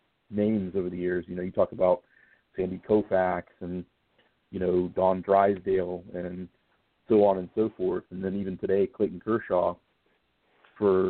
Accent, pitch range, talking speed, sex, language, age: American, 90-105 Hz, 155 wpm, male, English, 50-69